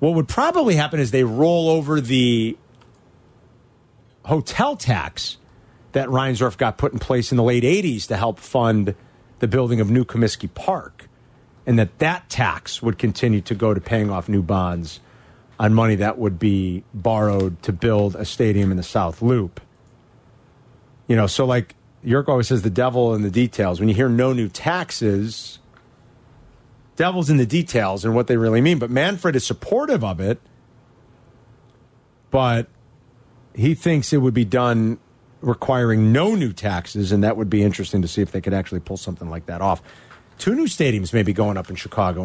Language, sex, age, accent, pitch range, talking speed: English, male, 40-59, American, 105-135 Hz, 180 wpm